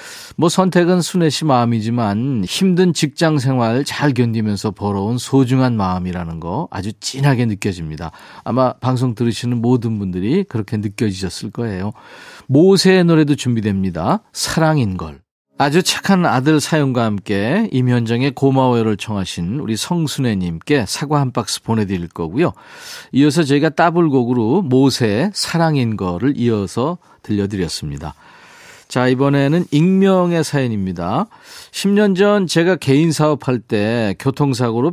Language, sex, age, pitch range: Korean, male, 40-59, 110-155 Hz